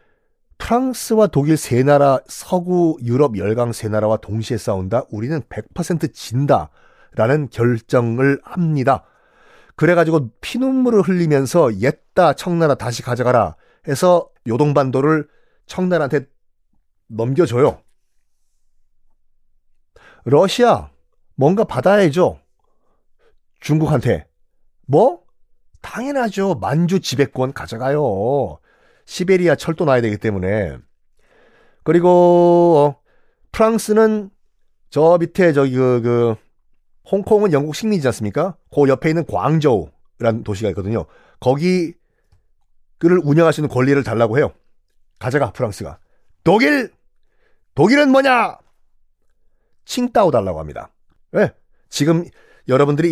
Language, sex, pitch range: Korean, male, 120-175 Hz